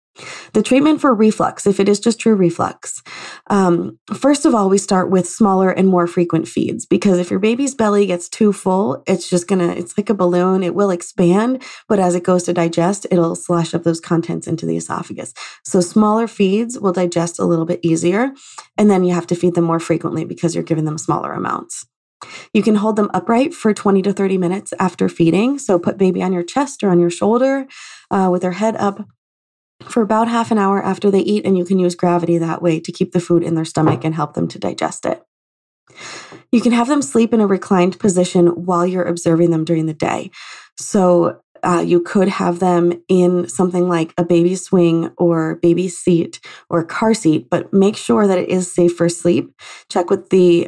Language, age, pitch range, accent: English, 20-39, 170-205 Hz, American